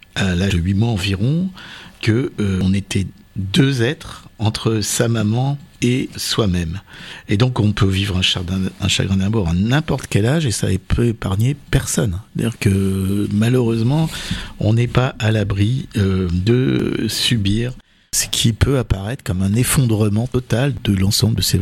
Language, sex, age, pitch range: French, male, 50-69, 100-125 Hz